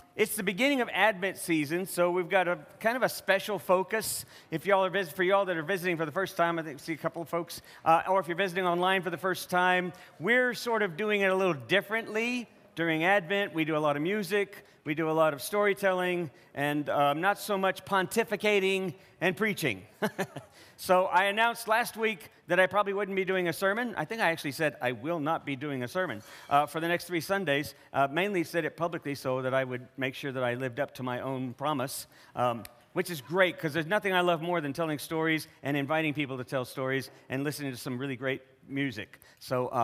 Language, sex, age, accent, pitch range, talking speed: English, male, 50-69, American, 140-190 Hz, 230 wpm